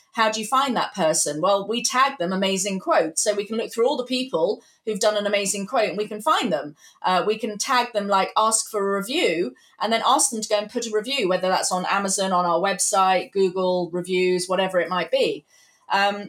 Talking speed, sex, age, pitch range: 235 wpm, female, 30-49, 185-255 Hz